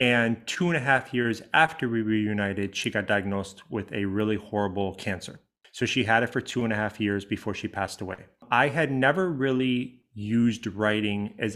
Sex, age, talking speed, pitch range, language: male, 30-49, 195 wpm, 105-125 Hz, English